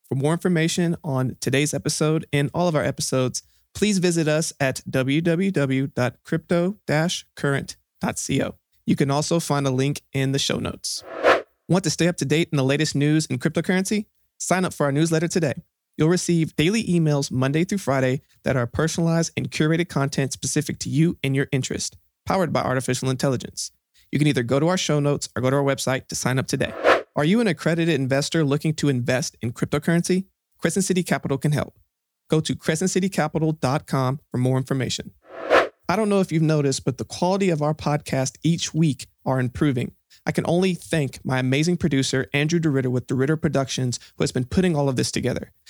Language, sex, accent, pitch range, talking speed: English, male, American, 135-170 Hz, 185 wpm